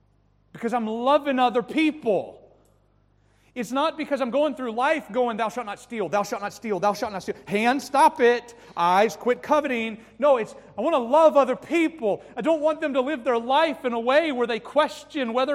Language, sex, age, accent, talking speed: English, male, 30-49, American, 210 wpm